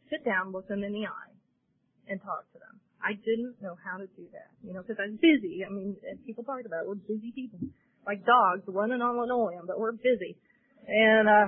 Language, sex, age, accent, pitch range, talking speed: English, female, 30-49, American, 195-255 Hz, 220 wpm